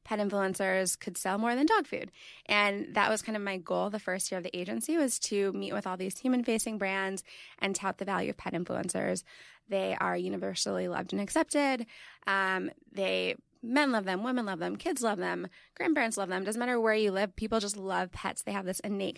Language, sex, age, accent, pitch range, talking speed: English, female, 20-39, American, 185-225 Hz, 215 wpm